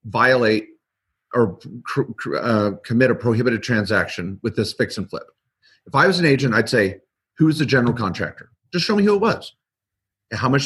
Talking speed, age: 180 wpm, 40-59